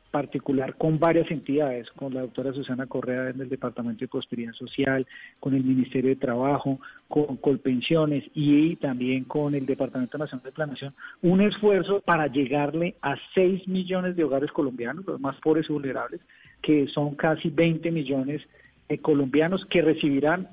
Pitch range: 135-165 Hz